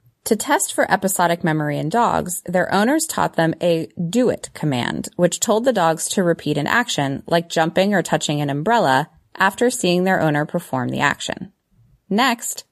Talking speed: 170 wpm